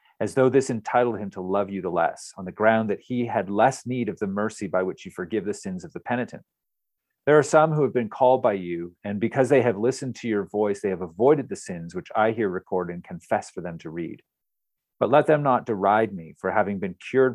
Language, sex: English, male